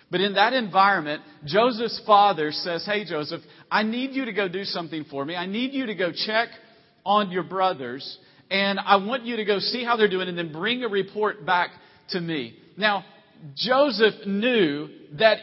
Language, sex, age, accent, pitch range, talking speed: English, male, 40-59, American, 155-210 Hz, 190 wpm